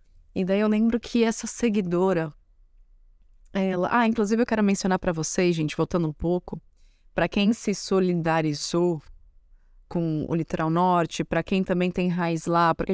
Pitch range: 160-190 Hz